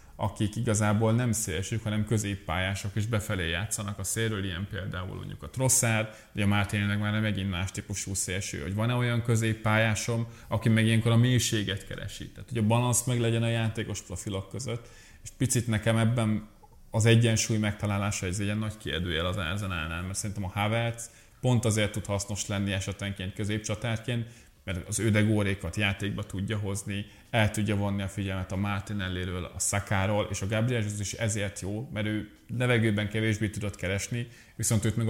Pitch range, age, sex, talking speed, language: 100-115 Hz, 30-49, male, 175 wpm, Hungarian